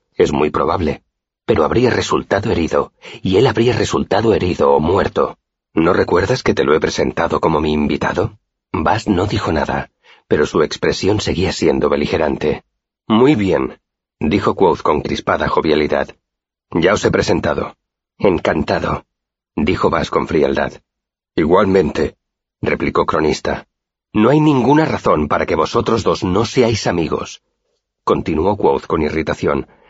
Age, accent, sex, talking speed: 40-59, Spanish, male, 135 wpm